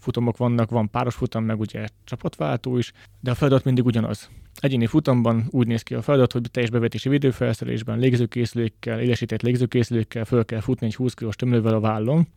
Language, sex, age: Hungarian, male, 20-39